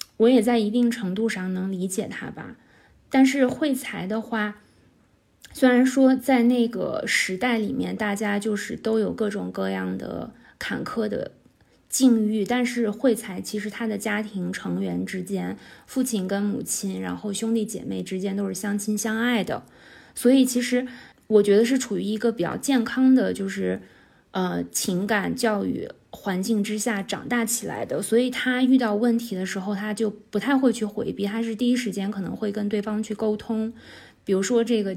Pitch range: 200-235 Hz